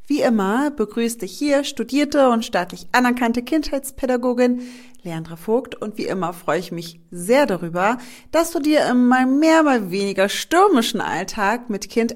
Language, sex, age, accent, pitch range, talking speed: German, female, 40-59, German, 185-245 Hz, 160 wpm